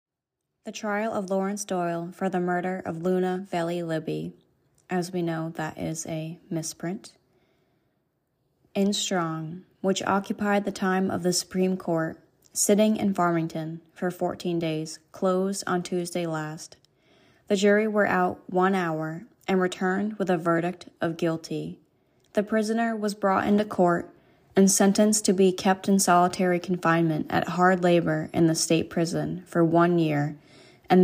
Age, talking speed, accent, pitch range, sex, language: 20-39, 150 wpm, American, 165-195 Hz, female, English